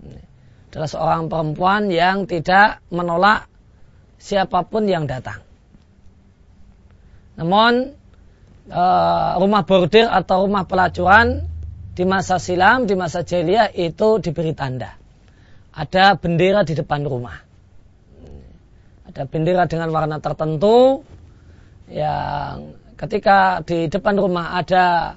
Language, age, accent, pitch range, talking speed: Indonesian, 20-39, native, 115-190 Hz, 95 wpm